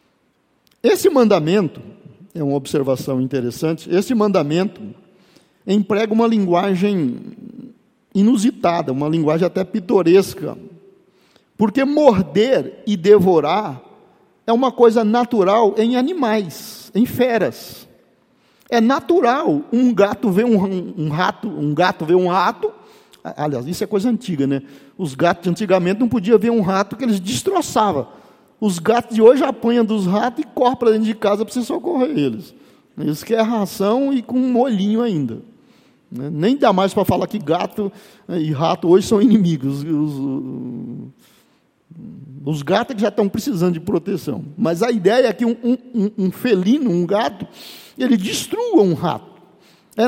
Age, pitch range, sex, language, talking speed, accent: 50-69, 180-245 Hz, male, Portuguese, 145 wpm, Brazilian